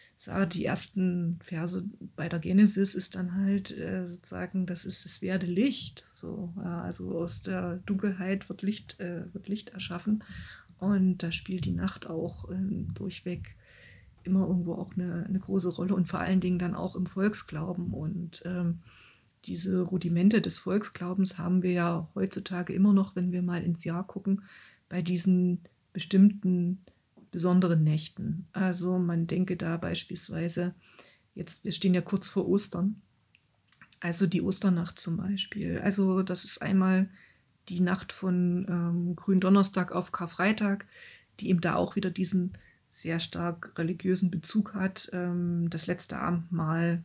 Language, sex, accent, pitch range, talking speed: German, female, German, 175-190 Hz, 145 wpm